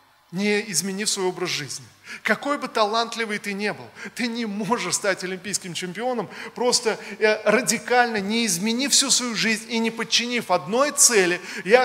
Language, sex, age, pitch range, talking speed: Russian, male, 20-39, 190-235 Hz, 150 wpm